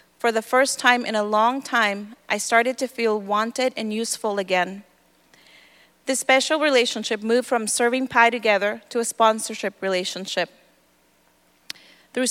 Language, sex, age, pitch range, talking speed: English, female, 30-49, 210-250 Hz, 140 wpm